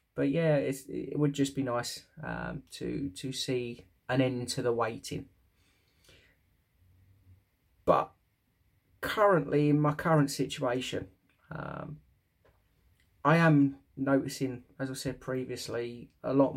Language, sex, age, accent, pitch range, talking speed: English, male, 20-39, British, 105-140 Hz, 120 wpm